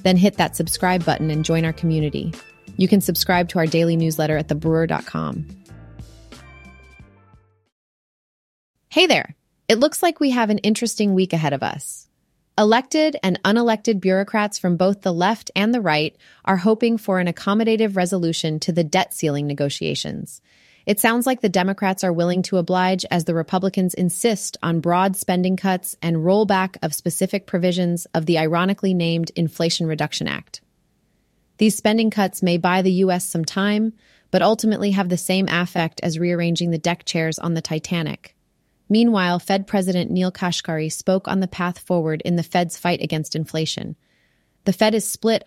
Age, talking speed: 30-49, 165 wpm